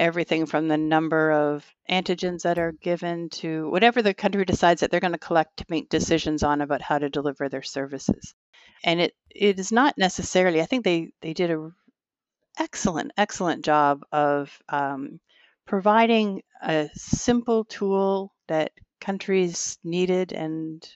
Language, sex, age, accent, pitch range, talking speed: English, female, 50-69, American, 155-185 Hz, 155 wpm